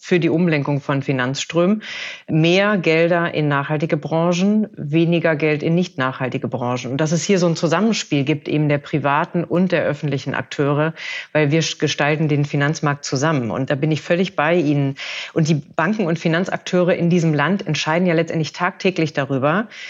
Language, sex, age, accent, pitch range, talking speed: German, female, 40-59, German, 145-175 Hz, 170 wpm